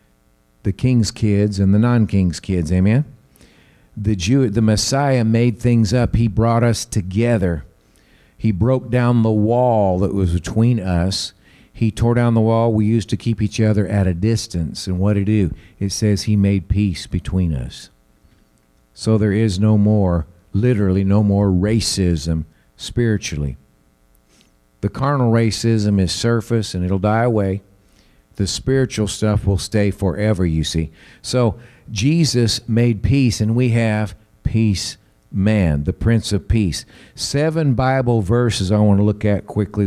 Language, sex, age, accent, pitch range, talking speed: English, male, 50-69, American, 95-115 Hz, 155 wpm